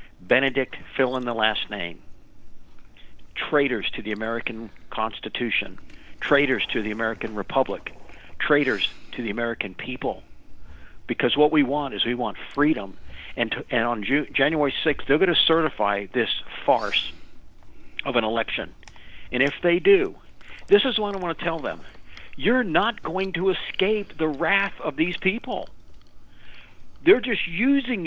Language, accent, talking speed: English, American, 150 wpm